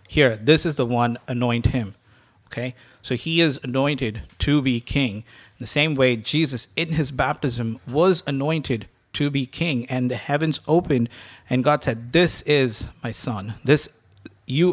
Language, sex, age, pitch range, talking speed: English, male, 50-69, 120-150 Hz, 165 wpm